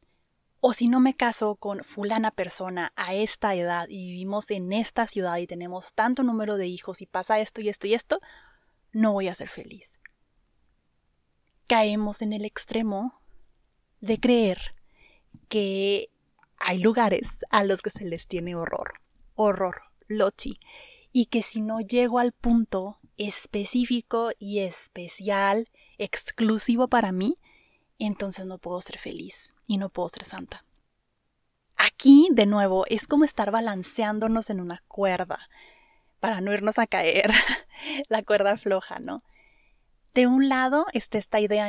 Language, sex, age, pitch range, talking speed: Spanish, female, 20-39, 185-230 Hz, 145 wpm